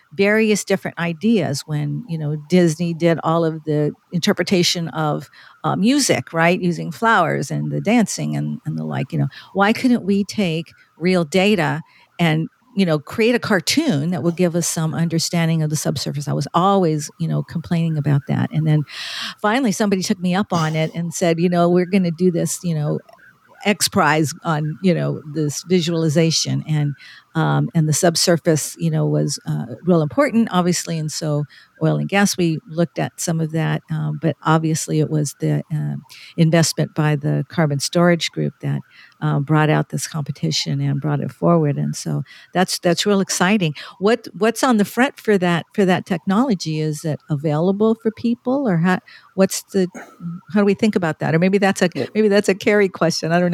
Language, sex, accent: English, female, American